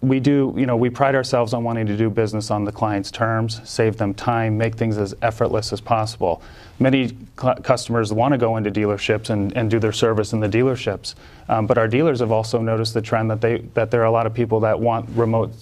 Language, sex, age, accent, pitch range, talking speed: English, male, 30-49, American, 110-120 Hz, 240 wpm